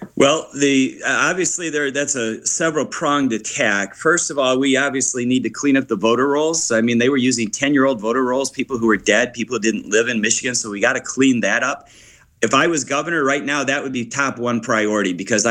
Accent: American